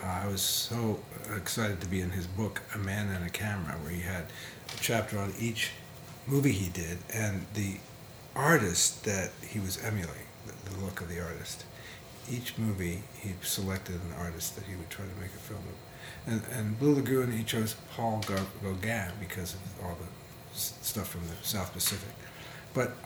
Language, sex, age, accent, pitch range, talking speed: English, male, 50-69, American, 95-125 Hz, 190 wpm